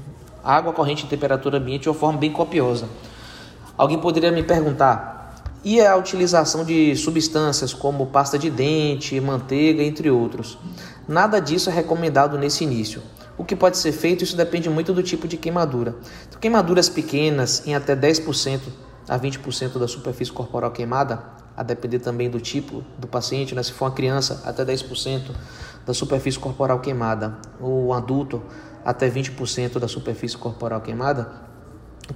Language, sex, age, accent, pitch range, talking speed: Portuguese, male, 20-39, Brazilian, 125-155 Hz, 155 wpm